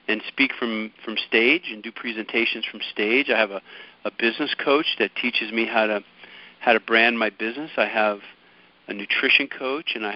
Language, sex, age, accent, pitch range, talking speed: English, male, 50-69, American, 110-150 Hz, 195 wpm